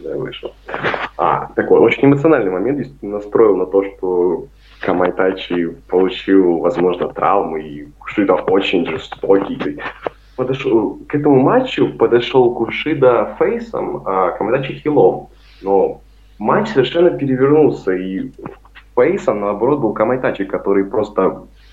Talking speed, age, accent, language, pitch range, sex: 110 wpm, 20-39, native, Russian, 95-140 Hz, male